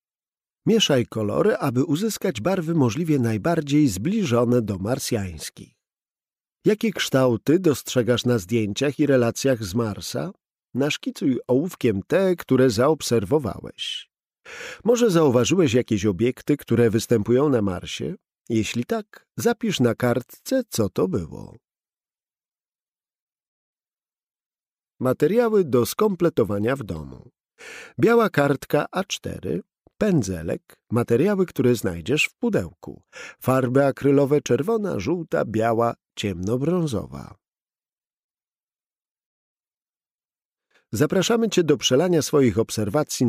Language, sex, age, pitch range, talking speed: Polish, male, 50-69, 115-165 Hz, 90 wpm